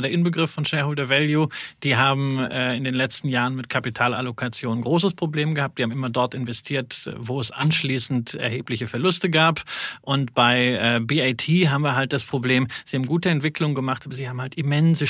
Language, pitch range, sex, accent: German, 130-170 Hz, male, German